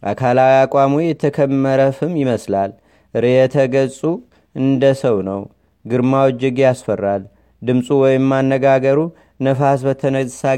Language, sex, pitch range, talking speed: Amharic, male, 125-140 Hz, 90 wpm